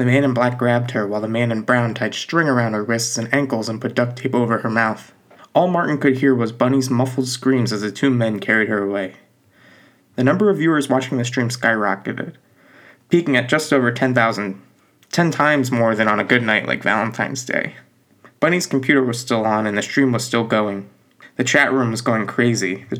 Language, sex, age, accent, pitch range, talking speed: English, male, 20-39, American, 120-150 Hz, 215 wpm